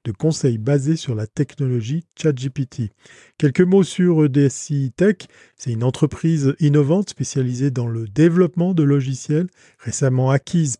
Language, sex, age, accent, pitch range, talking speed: French, male, 40-59, French, 125-165 Hz, 135 wpm